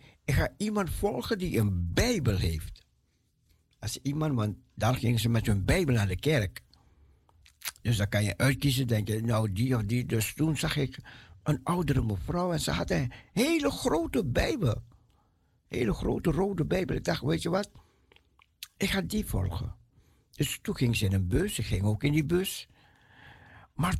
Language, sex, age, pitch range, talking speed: Dutch, male, 60-79, 110-165 Hz, 180 wpm